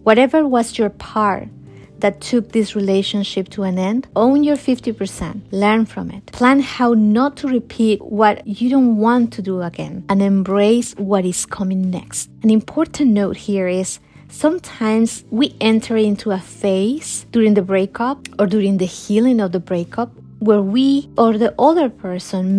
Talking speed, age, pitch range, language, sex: 165 wpm, 30-49, 190-225 Hz, English, female